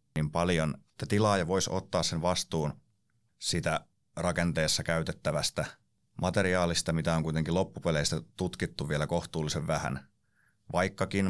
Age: 30-49